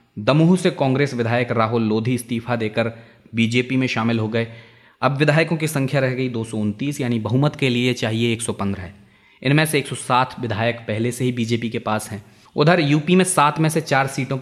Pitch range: 115-140 Hz